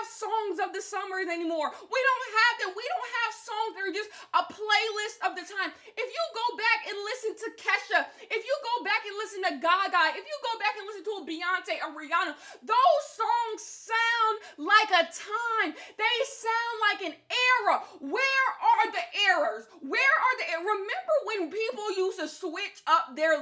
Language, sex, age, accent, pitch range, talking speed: English, female, 20-39, American, 325-435 Hz, 190 wpm